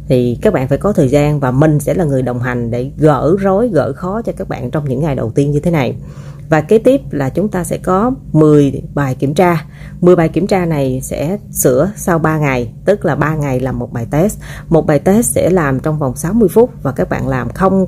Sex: female